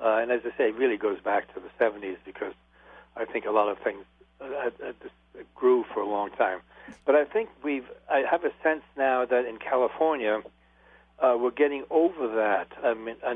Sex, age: male, 60-79